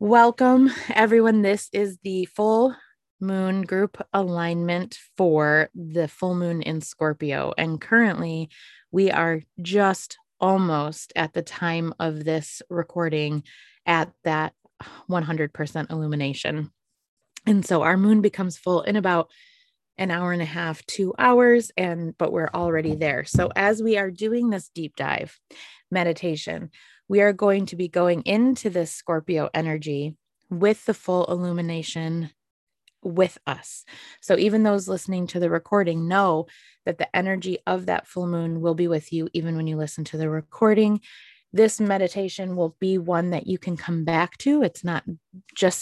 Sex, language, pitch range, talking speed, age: female, English, 165-205 Hz, 150 wpm, 20-39